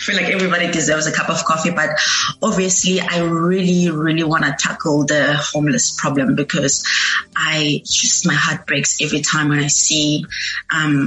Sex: female